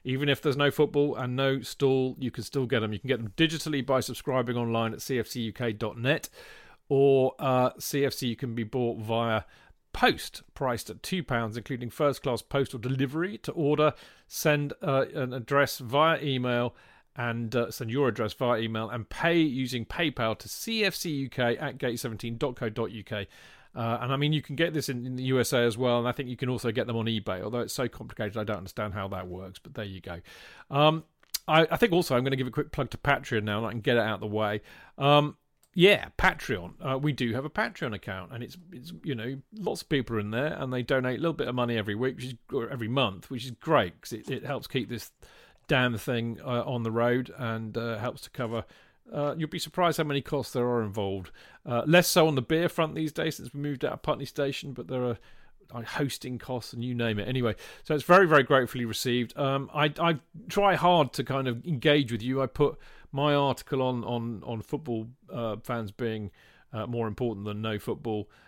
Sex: male